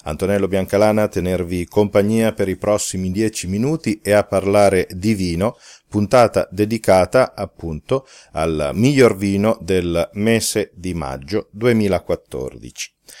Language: Italian